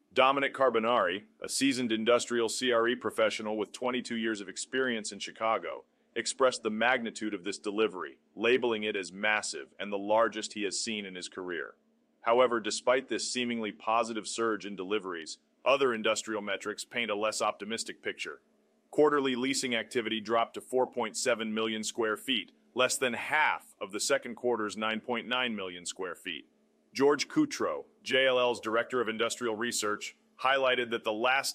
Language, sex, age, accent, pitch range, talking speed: English, male, 30-49, American, 110-130 Hz, 150 wpm